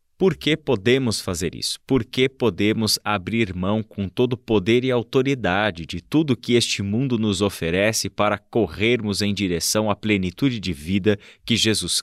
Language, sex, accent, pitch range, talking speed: Portuguese, male, Brazilian, 100-125 Hz, 155 wpm